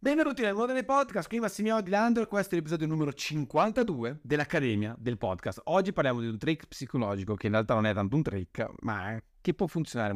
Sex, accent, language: male, native, Italian